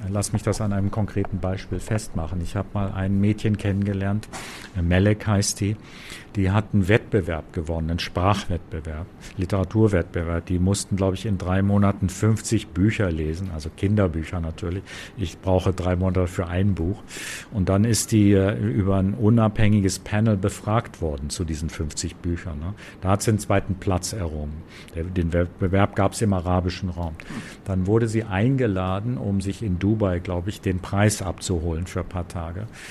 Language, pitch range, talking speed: German, 90-105 Hz, 160 wpm